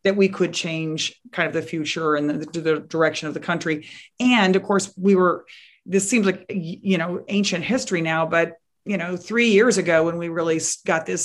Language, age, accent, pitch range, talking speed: English, 40-59, American, 155-180 Hz, 210 wpm